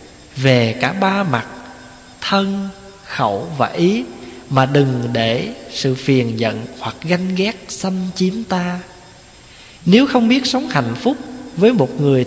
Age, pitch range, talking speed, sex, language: 20-39, 120-190 Hz, 140 wpm, male, Vietnamese